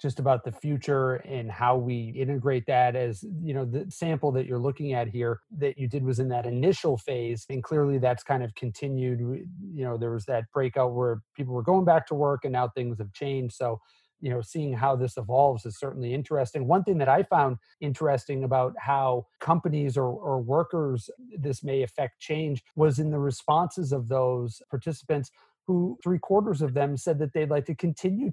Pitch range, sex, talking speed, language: 130-165 Hz, male, 200 wpm, English